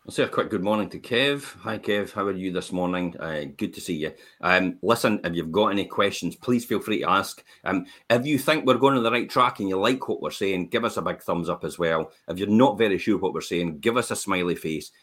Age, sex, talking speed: 40-59, male, 275 wpm